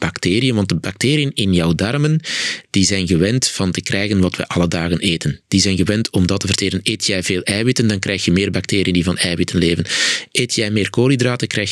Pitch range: 95-145 Hz